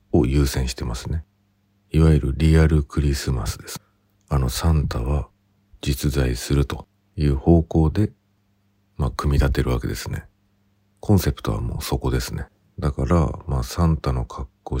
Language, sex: Japanese, male